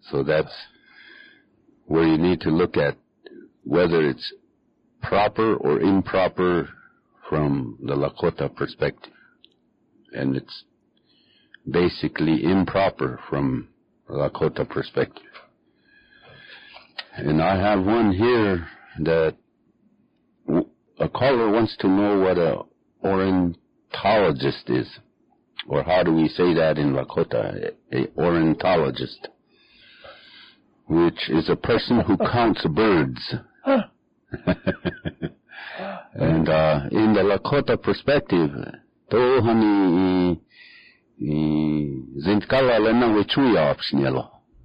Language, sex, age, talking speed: English, male, 60-79, 95 wpm